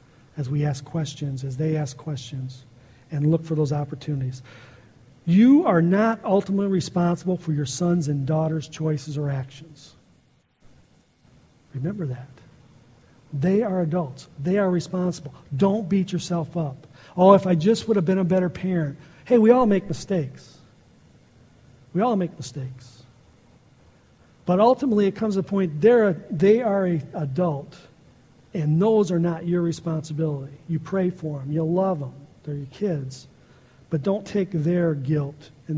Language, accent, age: English, American, 50-69